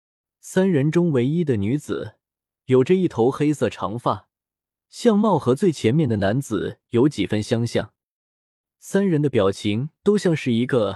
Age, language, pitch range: 20-39, Chinese, 110-165 Hz